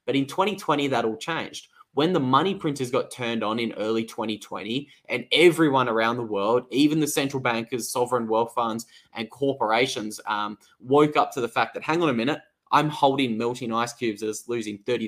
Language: English